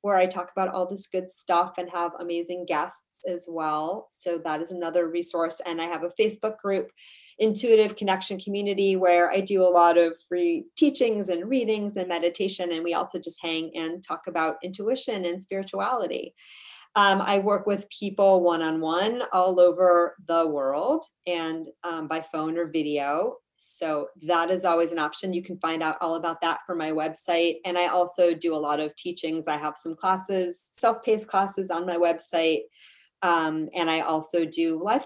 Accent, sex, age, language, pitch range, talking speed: American, female, 30-49, English, 165-195 Hz, 180 wpm